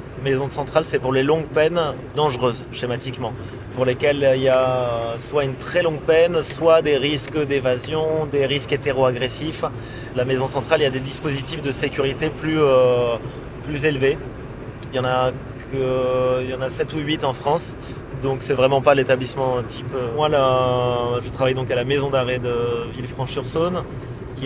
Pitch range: 125-145 Hz